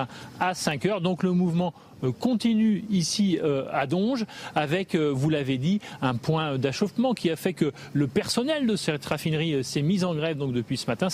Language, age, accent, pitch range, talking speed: French, 30-49, French, 140-185 Hz, 200 wpm